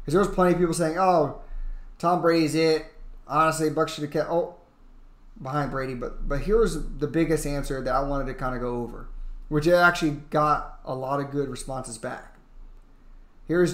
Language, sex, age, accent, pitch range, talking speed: English, male, 20-39, American, 130-160 Hz, 190 wpm